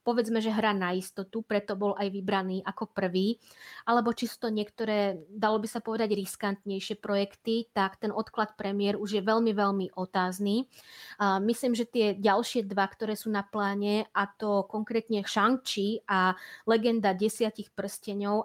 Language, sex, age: Slovak, female, 20-39